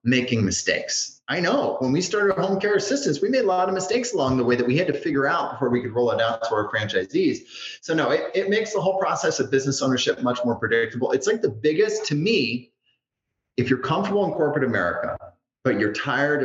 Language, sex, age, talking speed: English, male, 30-49, 230 wpm